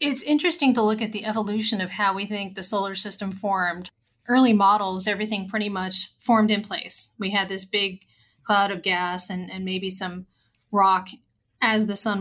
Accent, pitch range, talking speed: American, 190-215 Hz, 185 wpm